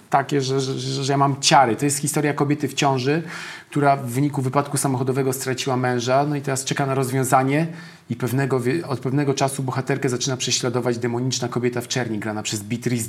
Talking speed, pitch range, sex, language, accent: 190 wpm, 120-145 Hz, male, Polish, native